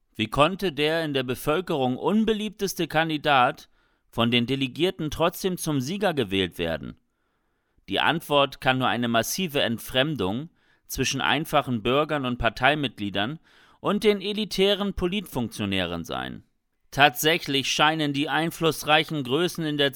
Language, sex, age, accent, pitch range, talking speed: German, male, 40-59, German, 130-170 Hz, 120 wpm